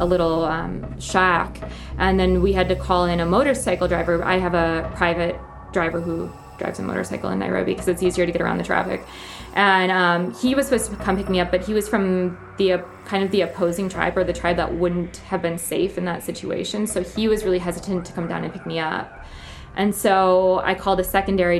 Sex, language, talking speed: female, English, 230 wpm